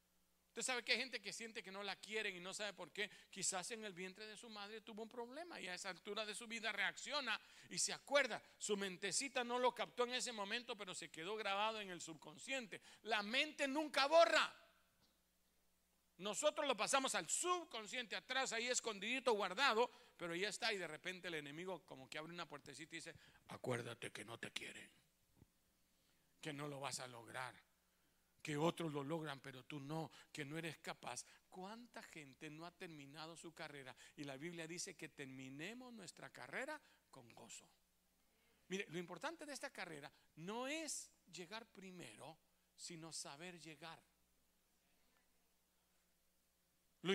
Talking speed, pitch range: 170 wpm, 155-235 Hz